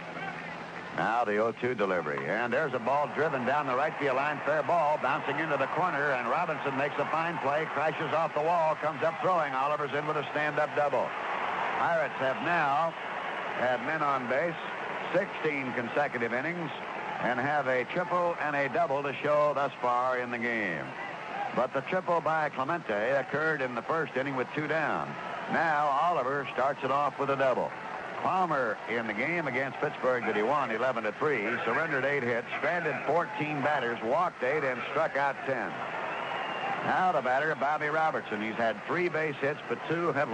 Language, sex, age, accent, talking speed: English, male, 60-79, American, 185 wpm